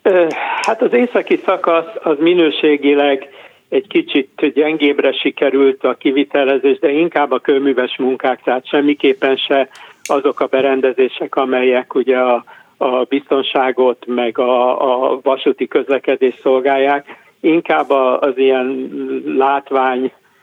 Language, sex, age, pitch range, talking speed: Hungarian, male, 60-79, 130-155 Hz, 115 wpm